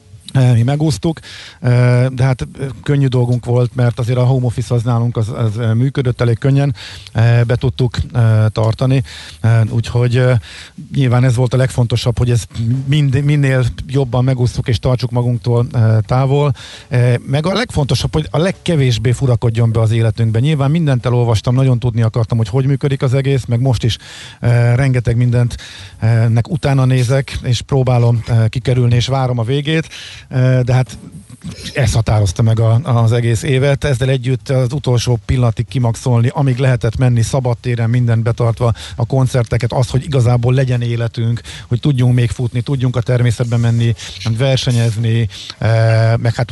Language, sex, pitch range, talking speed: Hungarian, male, 115-130 Hz, 145 wpm